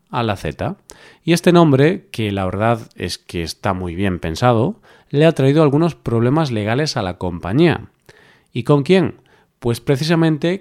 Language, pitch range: Spanish, 110-145 Hz